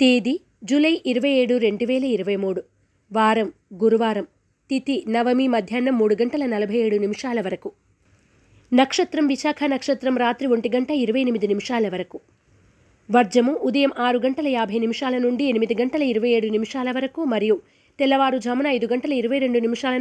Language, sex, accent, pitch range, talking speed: Telugu, female, native, 215-260 Hz, 140 wpm